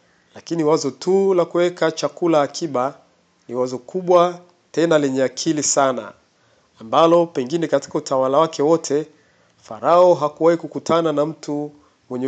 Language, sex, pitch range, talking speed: Swahili, male, 140-170 Hz, 125 wpm